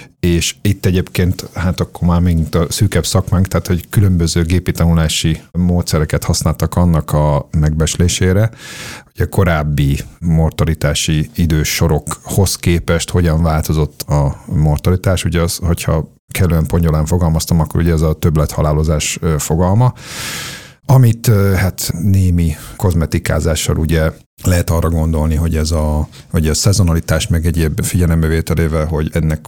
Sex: male